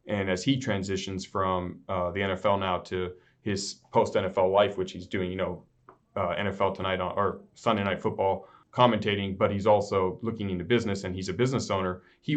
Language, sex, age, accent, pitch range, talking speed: English, male, 30-49, American, 95-110 Hz, 190 wpm